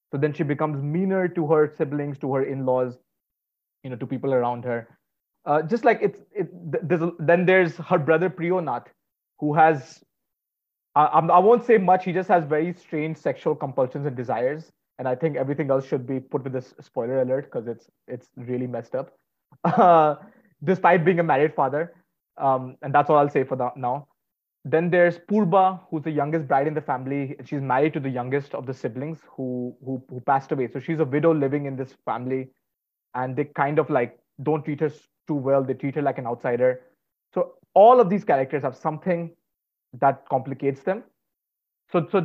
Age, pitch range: 30-49, 135-170 Hz